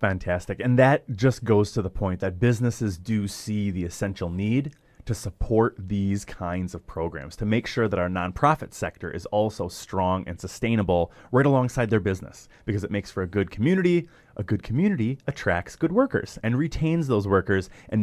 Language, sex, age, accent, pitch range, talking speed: English, male, 30-49, American, 100-140 Hz, 185 wpm